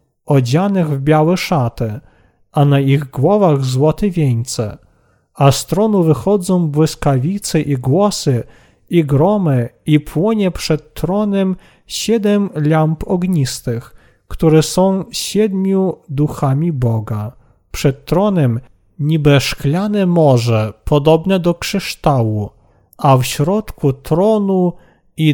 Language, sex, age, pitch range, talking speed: Polish, male, 40-59, 135-185 Hz, 105 wpm